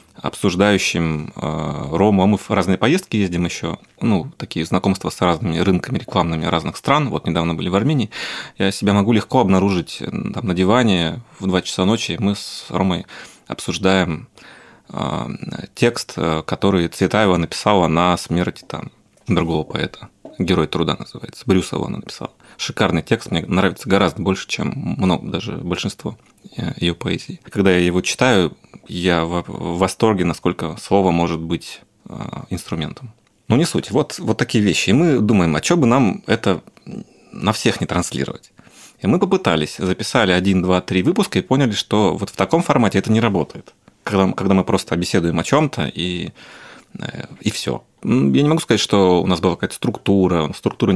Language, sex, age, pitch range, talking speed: Russian, male, 30-49, 85-105 Hz, 160 wpm